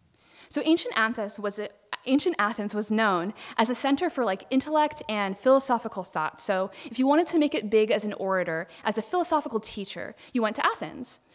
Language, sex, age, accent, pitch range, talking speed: English, female, 20-39, American, 200-265 Hz, 180 wpm